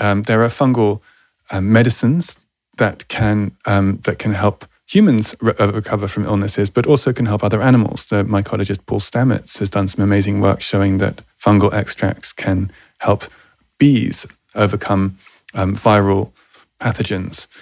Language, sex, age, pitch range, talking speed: English, male, 20-39, 100-115 Hz, 145 wpm